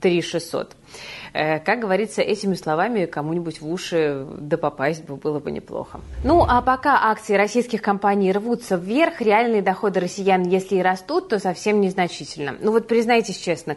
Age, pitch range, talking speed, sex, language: 20-39, 170-225 Hz, 140 wpm, female, Russian